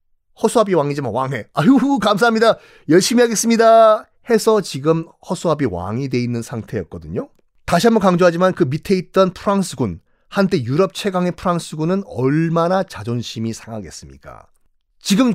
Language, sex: Korean, male